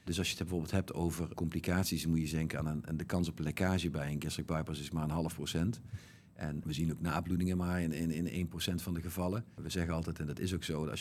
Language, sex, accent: Dutch, male, Dutch